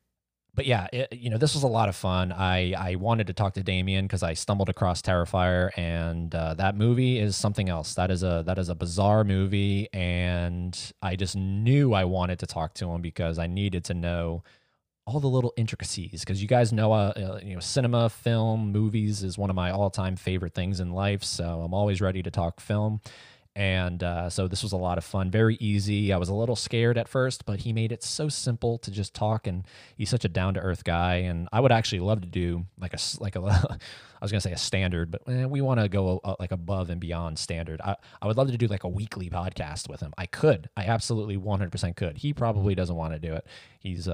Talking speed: 230 wpm